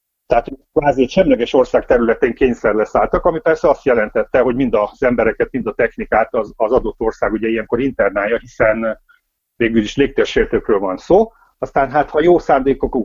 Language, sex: Hungarian, male